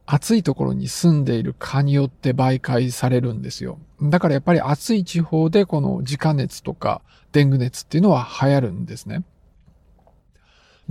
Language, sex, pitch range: Japanese, male, 135-175 Hz